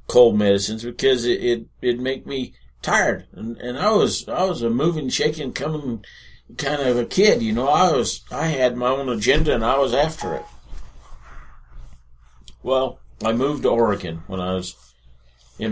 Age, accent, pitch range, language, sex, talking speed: 50-69, American, 90-120 Hz, English, male, 165 wpm